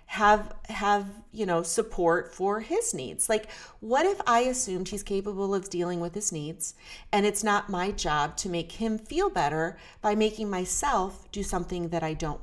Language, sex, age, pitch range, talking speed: English, female, 40-59, 170-230 Hz, 185 wpm